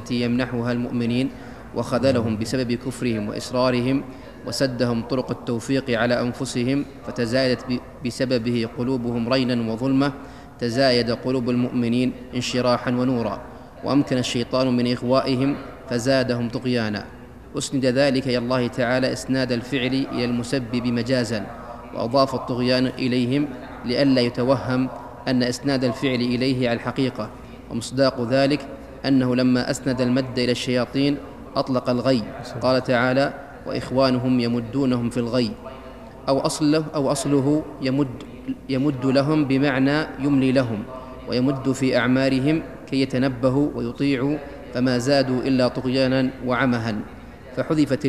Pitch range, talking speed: 125-135 Hz, 105 wpm